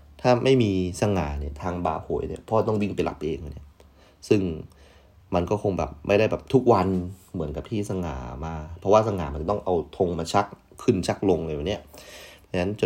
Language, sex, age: Thai, male, 30-49